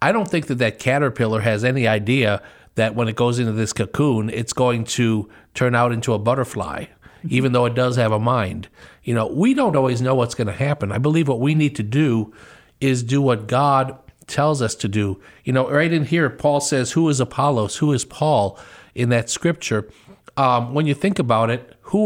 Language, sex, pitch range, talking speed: English, male, 115-145 Hz, 215 wpm